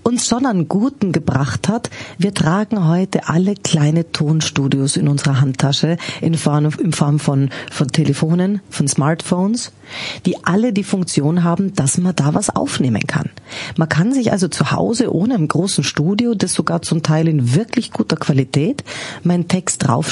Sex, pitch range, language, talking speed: female, 155-195 Hz, German, 170 wpm